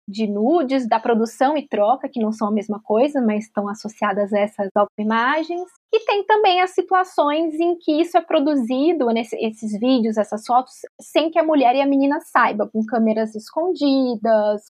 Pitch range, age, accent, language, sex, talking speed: 215-270 Hz, 20-39, Brazilian, Portuguese, female, 180 wpm